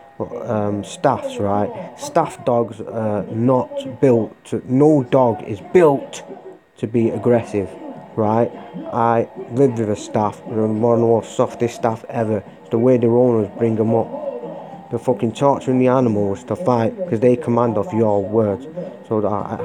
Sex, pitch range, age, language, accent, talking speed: male, 100-125 Hz, 30-49, English, British, 165 wpm